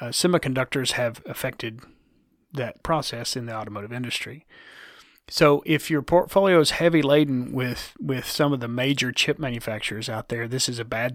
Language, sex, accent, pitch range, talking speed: English, male, American, 120-150 Hz, 165 wpm